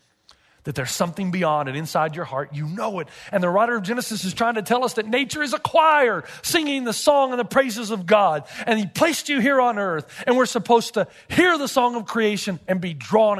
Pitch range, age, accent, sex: 195-305 Hz, 40-59, American, male